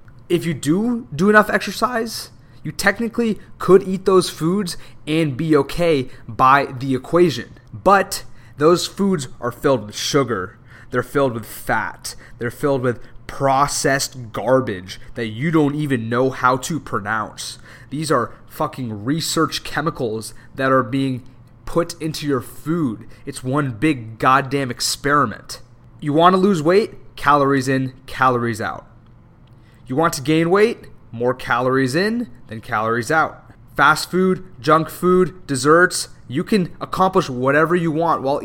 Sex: male